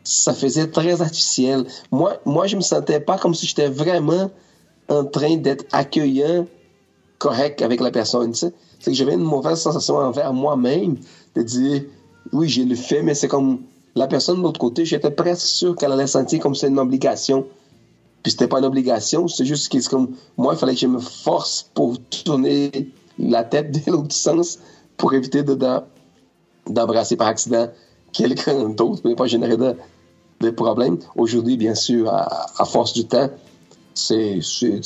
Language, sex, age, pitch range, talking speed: French, male, 40-59, 115-150 Hz, 175 wpm